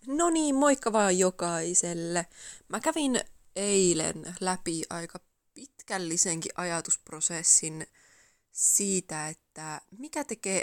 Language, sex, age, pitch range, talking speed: Finnish, female, 20-39, 160-190 Hz, 90 wpm